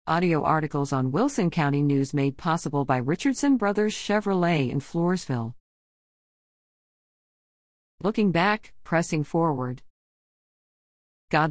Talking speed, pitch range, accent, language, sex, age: 100 wpm, 145-185 Hz, American, English, female, 50-69